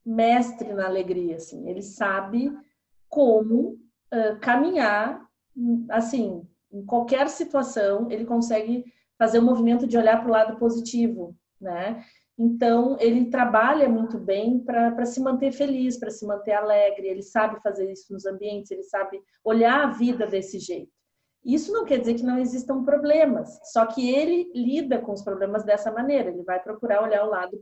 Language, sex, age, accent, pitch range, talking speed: Portuguese, female, 40-59, Brazilian, 205-260 Hz, 165 wpm